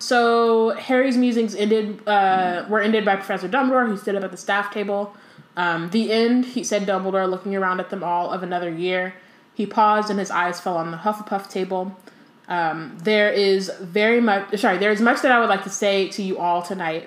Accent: American